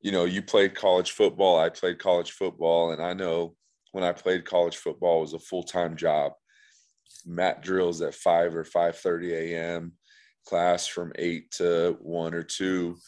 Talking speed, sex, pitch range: 175 wpm, male, 80-90 Hz